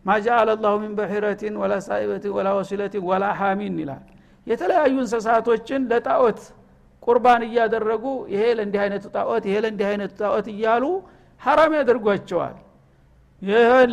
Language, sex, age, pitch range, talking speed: Amharic, male, 60-79, 195-235 Hz, 115 wpm